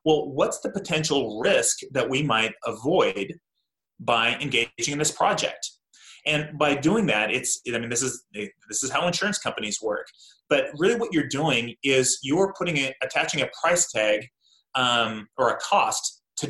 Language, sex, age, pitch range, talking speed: English, male, 30-49, 120-155 Hz, 165 wpm